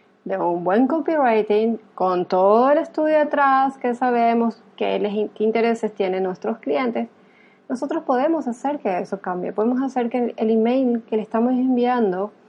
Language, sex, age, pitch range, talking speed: Spanish, female, 30-49, 200-240 Hz, 150 wpm